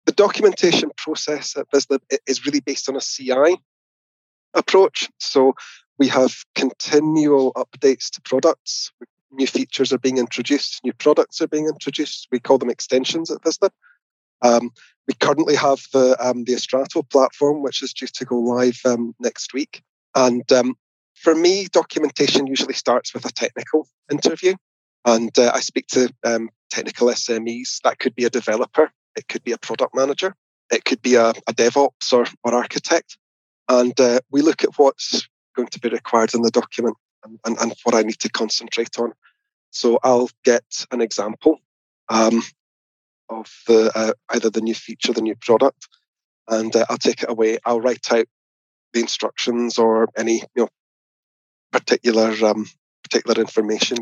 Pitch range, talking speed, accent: 115-140 Hz, 165 wpm, British